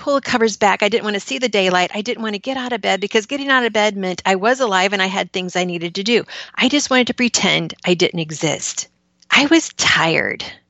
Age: 40-59